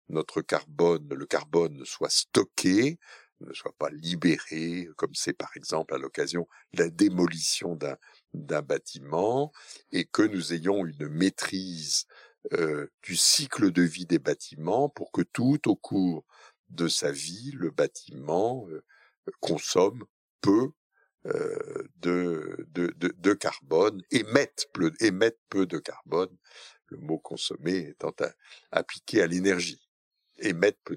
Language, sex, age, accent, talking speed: French, male, 60-79, French, 135 wpm